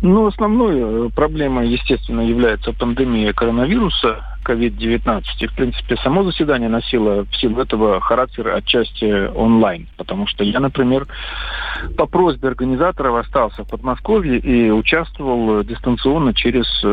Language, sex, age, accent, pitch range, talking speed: Russian, male, 50-69, native, 115-150 Hz, 120 wpm